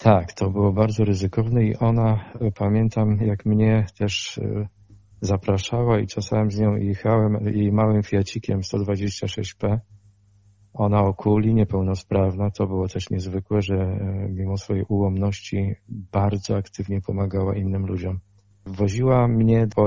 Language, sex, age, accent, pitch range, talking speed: Polish, male, 40-59, native, 100-110 Hz, 120 wpm